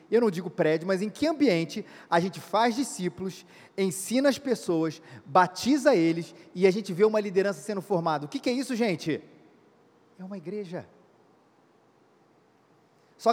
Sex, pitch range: male, 185-255 Hz